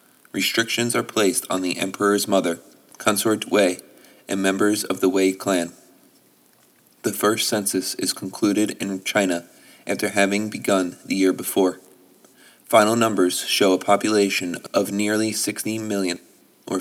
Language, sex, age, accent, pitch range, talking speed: English, male, 30-49, American, 95-100 Hz, 135 wpm